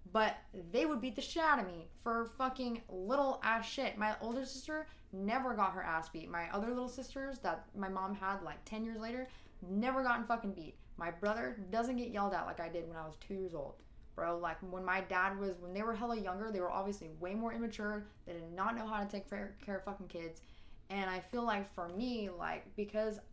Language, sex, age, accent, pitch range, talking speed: English, female, 20-39, American, 185-225 Hz, 230 wpm